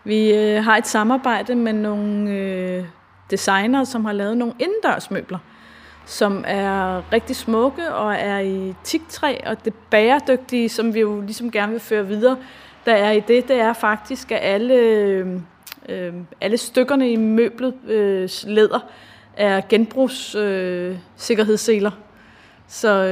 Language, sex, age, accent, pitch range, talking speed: Danish, female, 20-39, native, 205-235 Hz, 125 wpm